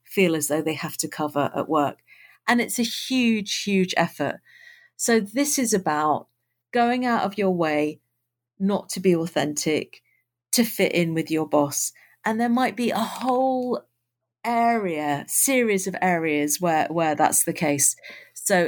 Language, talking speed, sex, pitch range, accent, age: English, 160 wpm, female, 160-205 Hz, British, 40-59